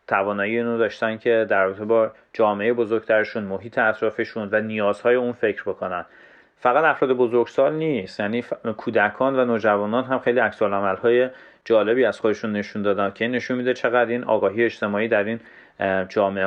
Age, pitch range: 30-49, 105-120 Hz